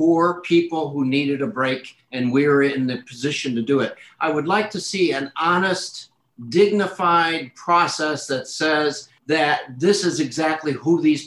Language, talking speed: English, 170 wpm